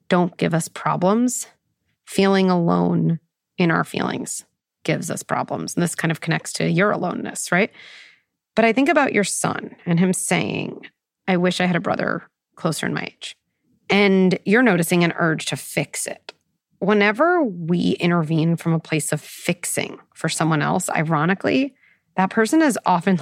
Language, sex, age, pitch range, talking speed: English, female, 30-49, 175-220 Hz, 165 wpm